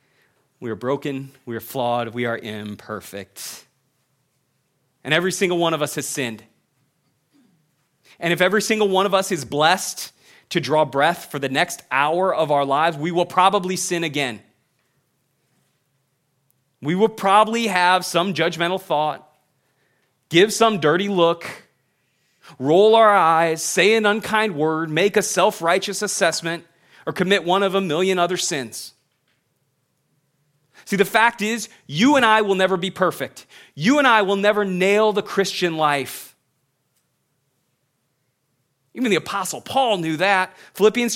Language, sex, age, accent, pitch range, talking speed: English, male, 30-49, American, 145-200 Hz, 145 wpm